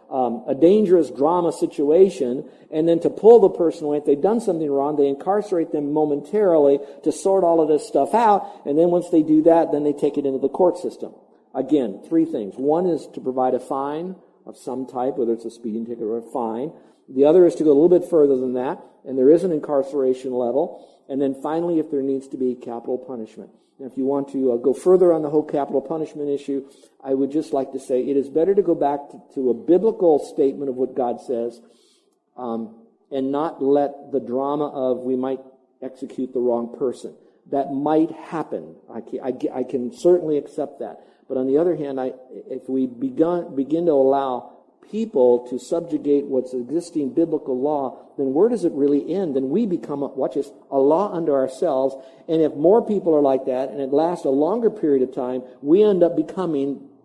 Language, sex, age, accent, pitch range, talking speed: English, male, 50-69, American, 130-160 Hz, 205 wpm